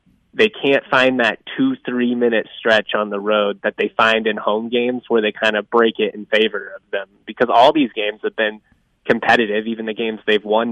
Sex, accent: male, American